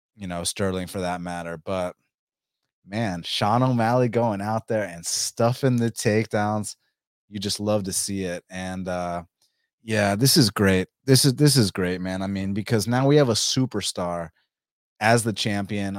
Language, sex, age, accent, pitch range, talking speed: English, male, 30-49, American, 100-135 Hz, 170 wpm